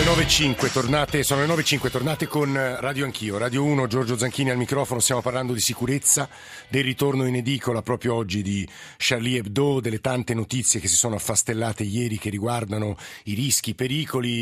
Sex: male